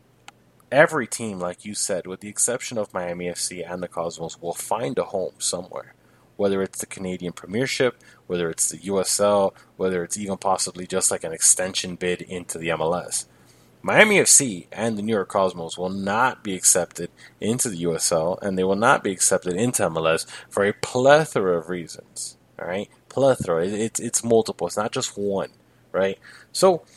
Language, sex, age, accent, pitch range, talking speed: English, male, 20-39, American, 90-115 Hz, 175 wpm